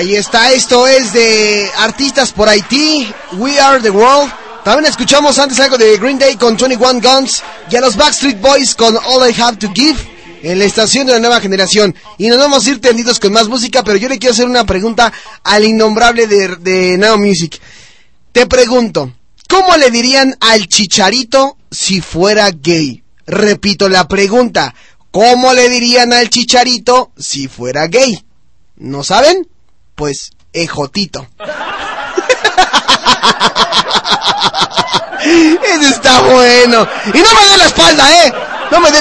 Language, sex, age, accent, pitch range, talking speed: Spanish, male, 20-39, Mexican, 195-260 Hz, 155 wpm